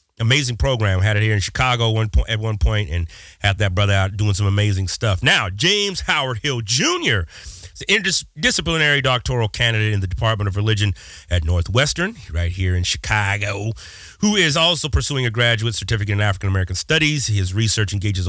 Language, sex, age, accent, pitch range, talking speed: English, male, 30-49, American, 100-145 Hz, 175 wpm